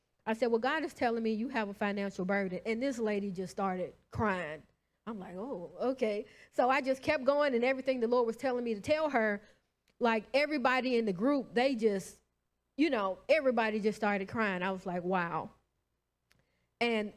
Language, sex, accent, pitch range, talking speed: English, female, American, 195-240 Hz, 190 wpm